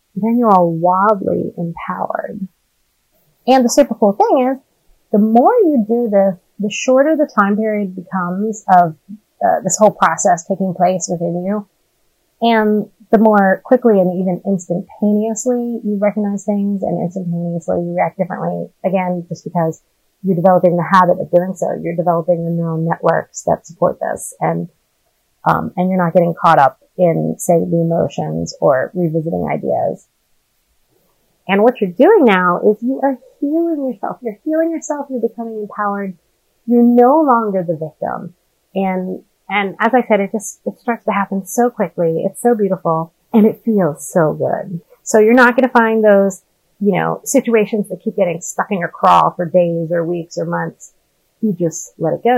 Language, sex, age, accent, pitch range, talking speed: English, female, 30-49, American, 175-225 Hz, 170 wpm